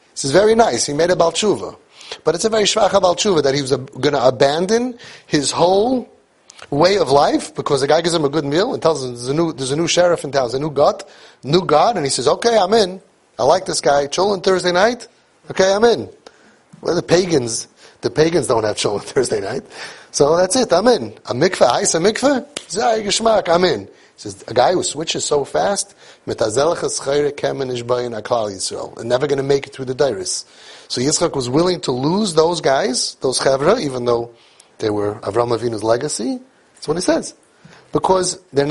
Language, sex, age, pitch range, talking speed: English, male, 30-49, 135-190 Hz, 205 wpm